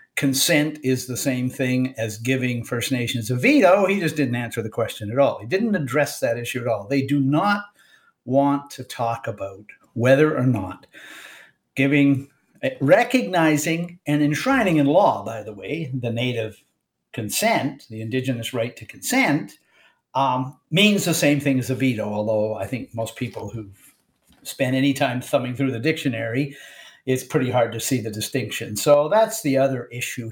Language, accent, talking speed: English, American, 170 wpm